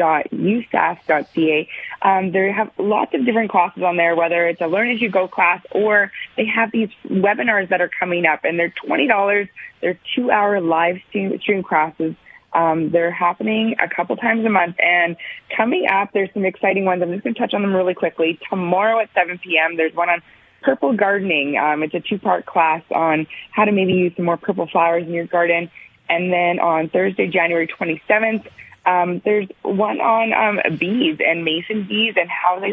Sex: female